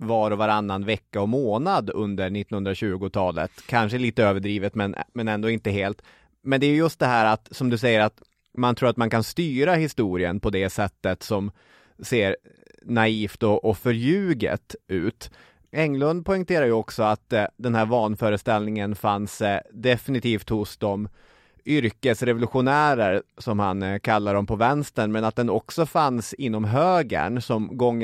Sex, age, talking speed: male, 30-49, 155 wpm